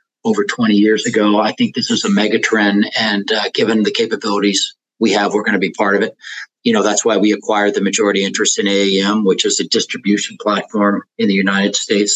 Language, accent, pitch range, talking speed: English, American, 105-130 Hz, 220 wpm